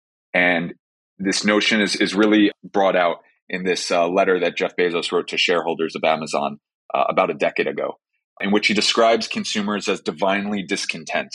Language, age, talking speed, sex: English, 30-49, 175 wpm, male